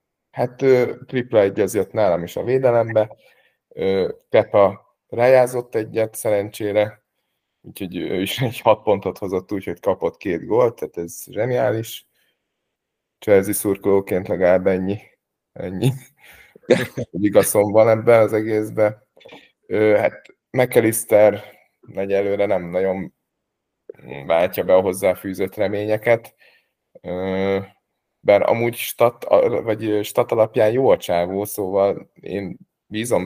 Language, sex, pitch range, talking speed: Hungarian, male, 100-115 Hz, 110 wpm